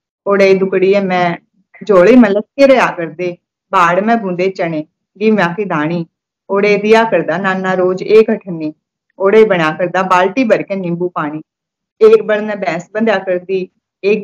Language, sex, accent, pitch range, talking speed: Hindi, female, native, 175-215 Hz, 150 wpm